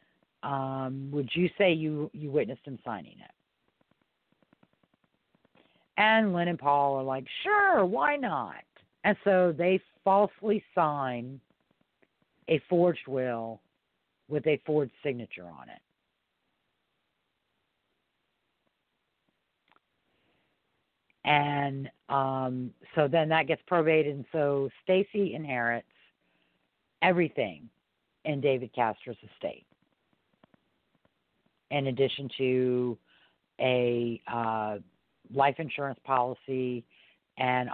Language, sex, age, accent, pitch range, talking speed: English, female, 50-69, American, 125-155 Hz, 90 wpm